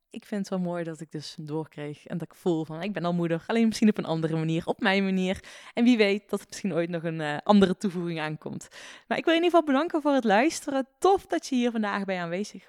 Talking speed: 275 wpm